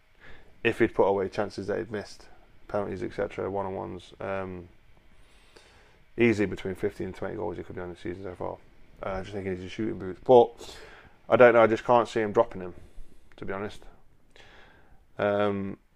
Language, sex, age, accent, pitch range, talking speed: English, male, 20-39, British, 95-115 Hz, 185 wpm